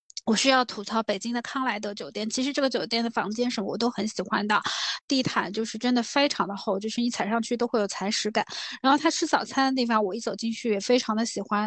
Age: 20-39